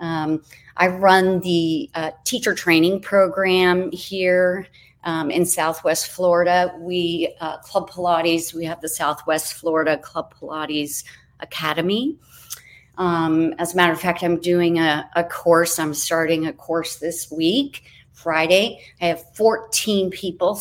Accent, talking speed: American, 135 wpm